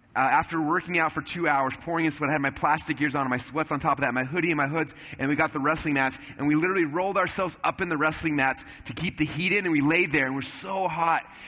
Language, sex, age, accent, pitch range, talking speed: English, male, 30-49, American, 145-180 Hz, 305 wpm